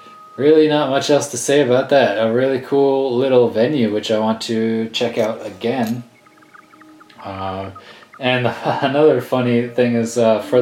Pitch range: 115-145 Hz